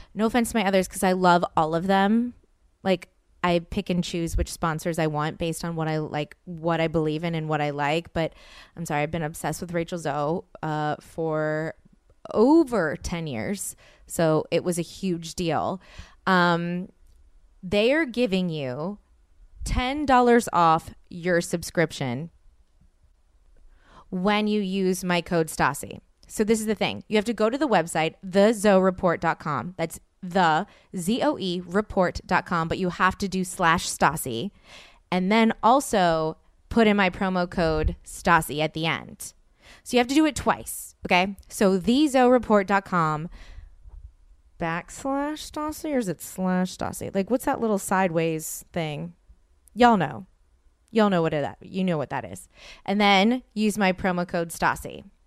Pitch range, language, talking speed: 155-200 Hz, English, 160 wpm